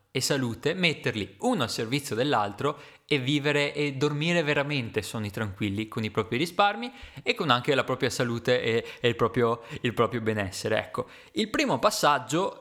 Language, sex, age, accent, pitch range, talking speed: Italian, male, 20-39, native, 110-135 Hz, 165 wpm